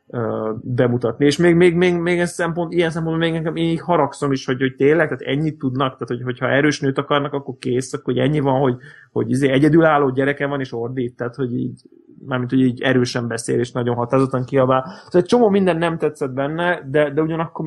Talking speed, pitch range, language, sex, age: 220 wpm, 130-160 Hz, Hungarian, male, 20-39